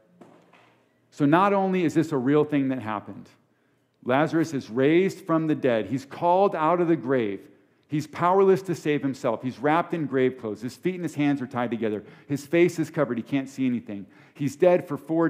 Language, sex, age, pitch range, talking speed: English, male, 50-69, 125-165 Hz, 205 wpm